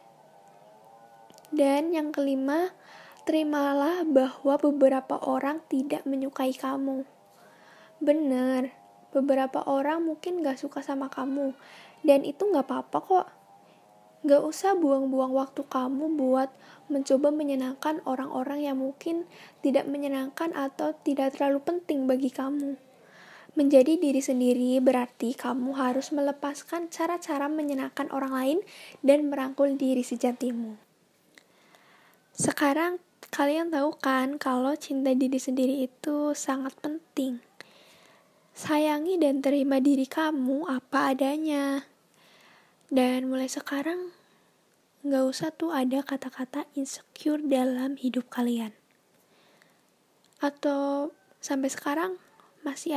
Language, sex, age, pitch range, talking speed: Indonesian, female, 20-39, 265-295 Hz, 105 wpm